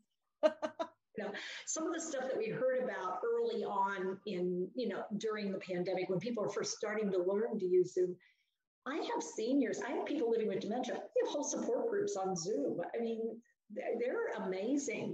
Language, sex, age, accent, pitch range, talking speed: English, female, 50-69, American, 195-280 Hz, 190 wpm